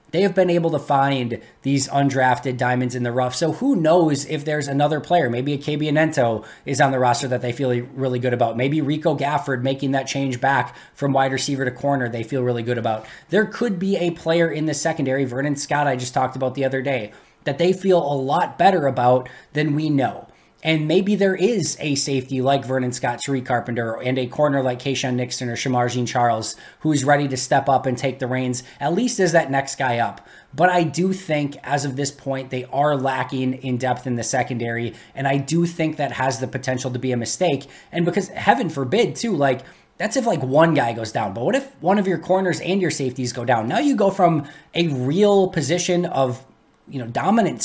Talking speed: 225 wpm